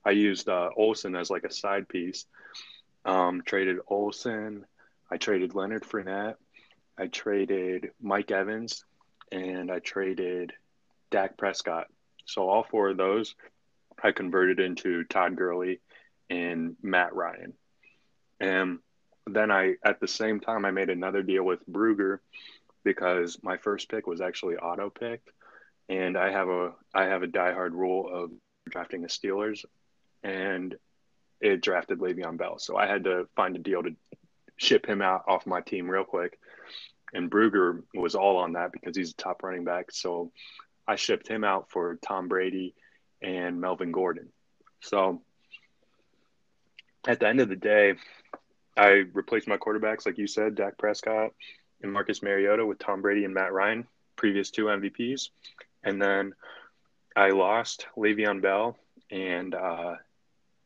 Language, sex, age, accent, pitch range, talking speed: English, male, 20-39, American, 90-105 Hz, 150 wpm